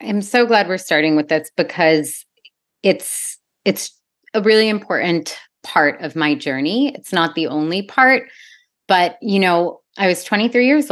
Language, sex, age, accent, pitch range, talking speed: English, female, 30-49, American, 150-195 Hz, 160 wpm